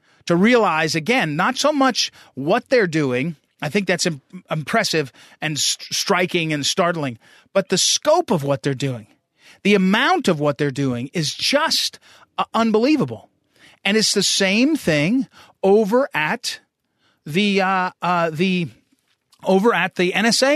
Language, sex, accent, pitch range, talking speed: English, male, American, 155-215 Hz, 140 wpm